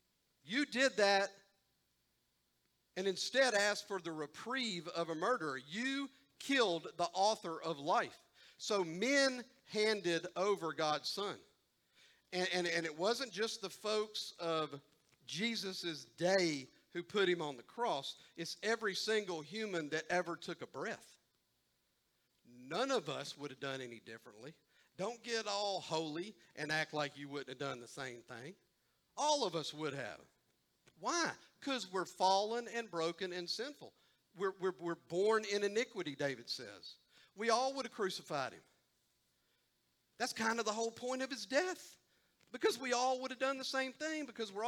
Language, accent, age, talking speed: English, American, 50-69, 160 wpm